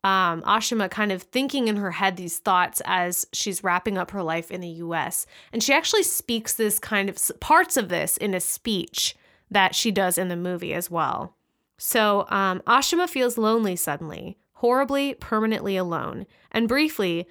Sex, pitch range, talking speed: female, 185-240 Hz, 175 wpm